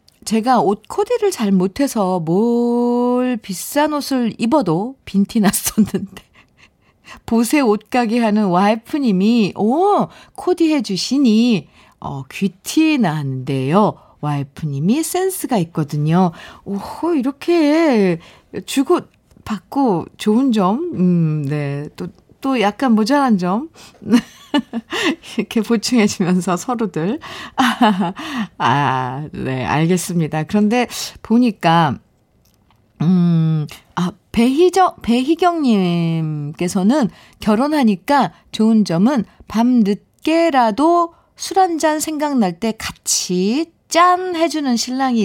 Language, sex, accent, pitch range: Korean, female, native, 175-275 Hz